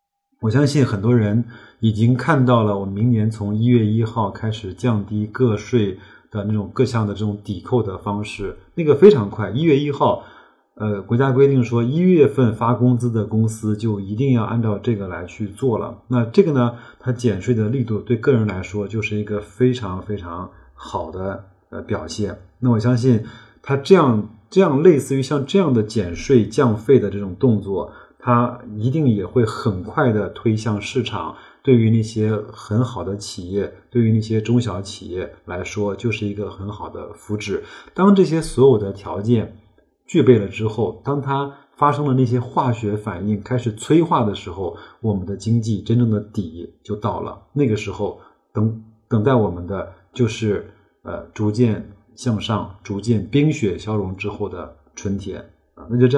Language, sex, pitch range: Chinese, male, 105-125 Hz